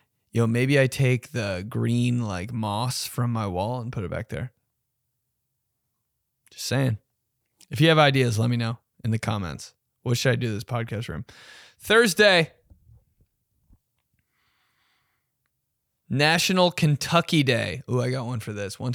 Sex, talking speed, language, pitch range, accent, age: male, 145 wpm, English, 115-140 Hz, American, 20-39